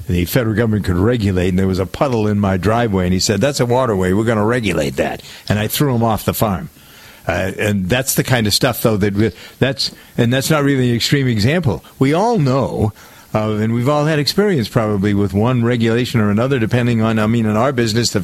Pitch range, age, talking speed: 105-125 Hz, 50-69, 235 wpm